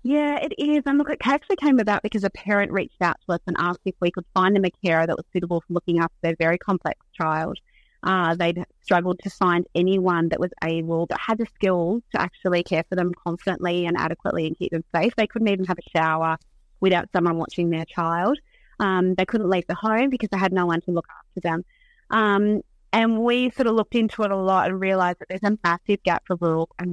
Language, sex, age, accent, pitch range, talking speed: English, female, 30-49, Australian, 170-205 Hz, 235 wpm